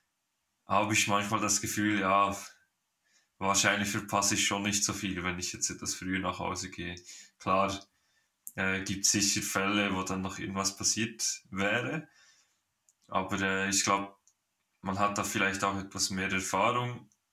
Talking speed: 150 wpm